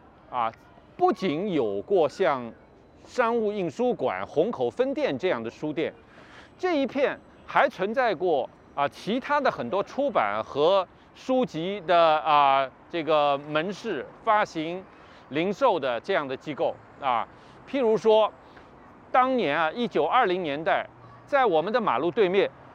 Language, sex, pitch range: Chinese, male, 155-250 Hz